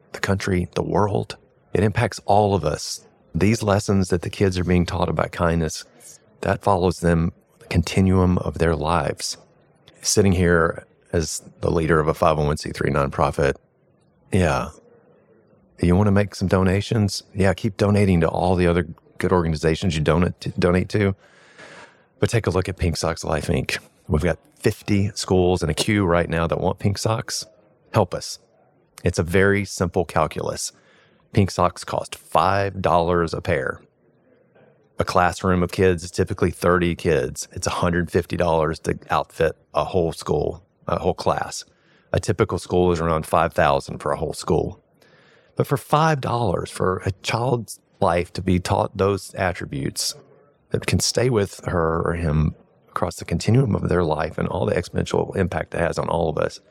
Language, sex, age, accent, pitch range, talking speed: English, male, 40-59, American, 85-100 Hz, 165 wpm